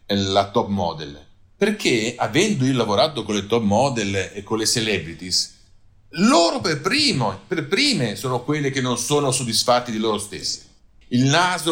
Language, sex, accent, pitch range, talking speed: Italian, male, native, 120-175 Hz, 160 wpm